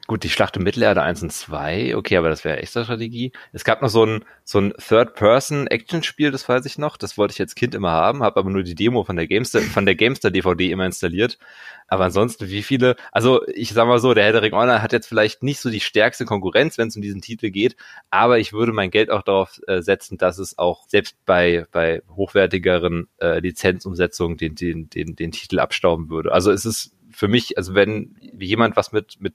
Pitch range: 95-115 Hz